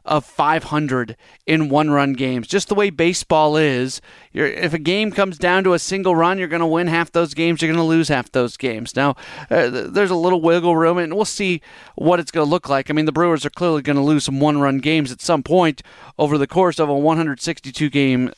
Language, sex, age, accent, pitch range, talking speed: English, male, 30-49, American, 150-175 Hz, 230 wpm